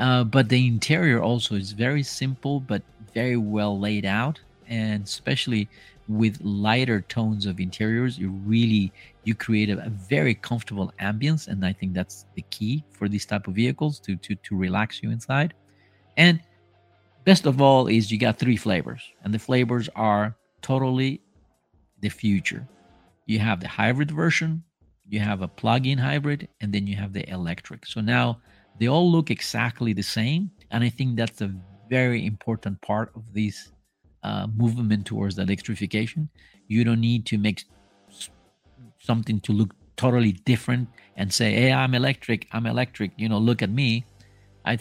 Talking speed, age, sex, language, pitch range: 165 wpm, 50-69, male, Spanish, 100-125 Hz